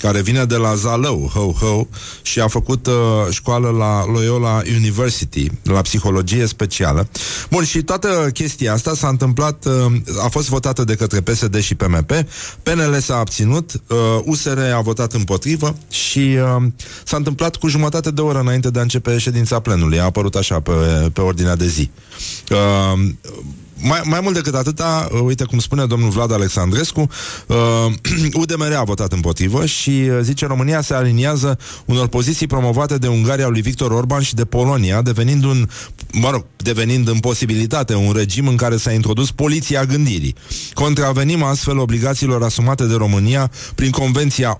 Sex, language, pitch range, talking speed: male, Romanian, 105-135 Hz, 155 wpm